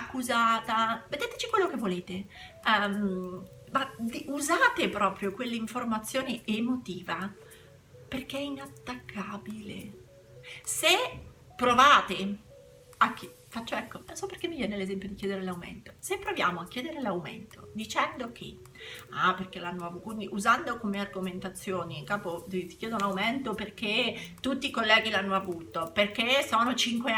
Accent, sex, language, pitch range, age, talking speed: native, female, Italian, 185-235 Hz, 30-49, 125 wpm